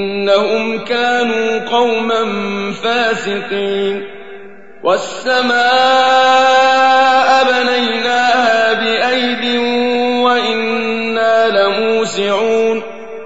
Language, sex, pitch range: Arabic, male, 220-245 Hz